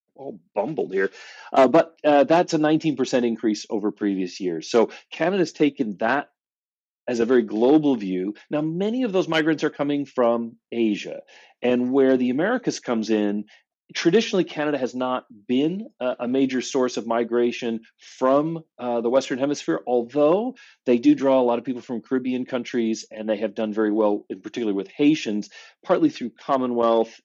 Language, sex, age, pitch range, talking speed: English, male, 40-59, 110-145 Hz, 170 wpm